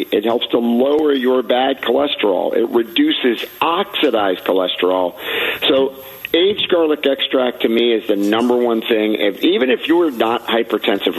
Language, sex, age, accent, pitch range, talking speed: English, male, 50-69, American, 105-155 Hz, 150 wpm